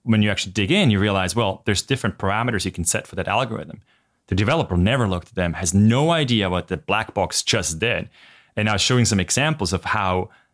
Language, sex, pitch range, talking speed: English, male, 90-115 Hz, 230 wpm